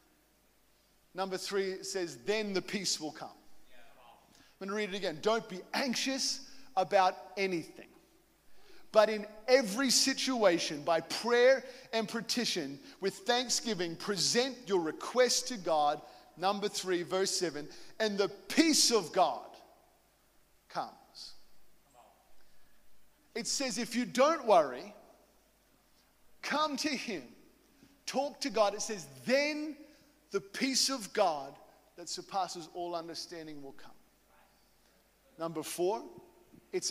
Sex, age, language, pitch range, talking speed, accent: male, 40-59, English, 195-265 Hz, 120 wpm, Australian